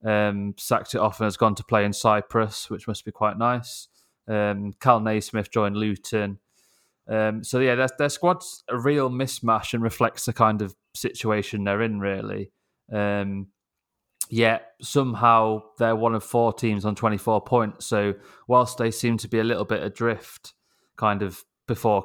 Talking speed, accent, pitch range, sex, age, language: 170 wpm, British, 100-115 Hz, male, 20-39, English